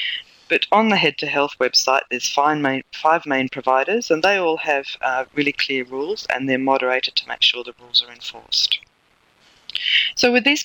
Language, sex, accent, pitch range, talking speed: English, female, Australian, 135-180 Hz, 185 wpm